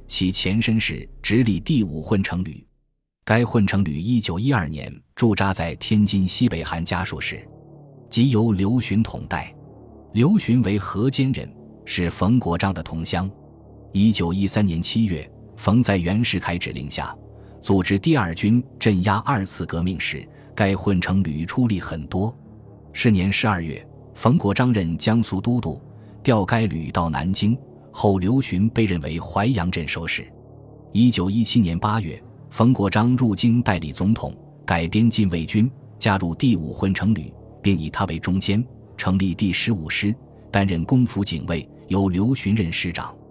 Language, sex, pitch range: Chinese, male, 90-120 Hz